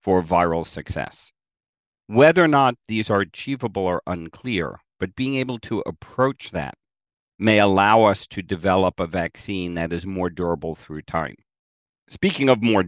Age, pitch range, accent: 50-69, 90-125 Hz, American